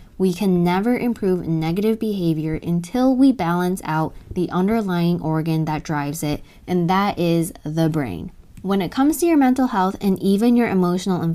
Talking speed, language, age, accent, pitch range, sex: 175 wpm, English, 10-29, American, 165-215 Hz, female